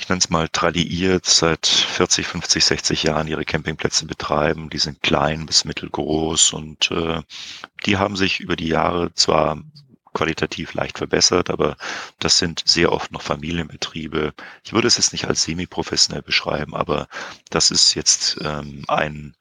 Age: 40-59